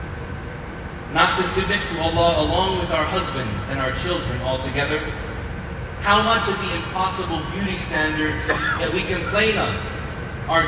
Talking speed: 140 wpm